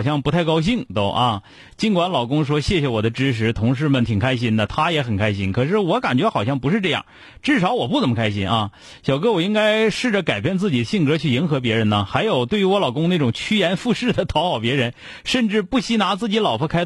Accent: native